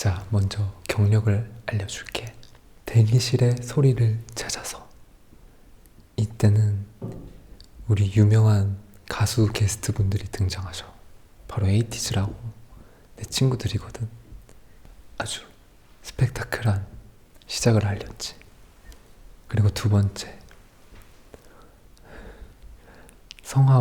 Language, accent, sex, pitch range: Korean, native, male, 95-115 Hz